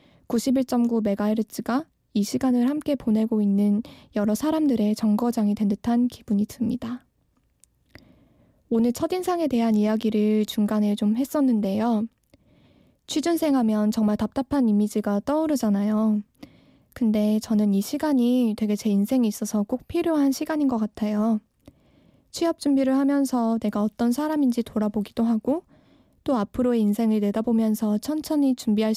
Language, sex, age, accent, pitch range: Korean, female, 20-39, native, 215-255 Hz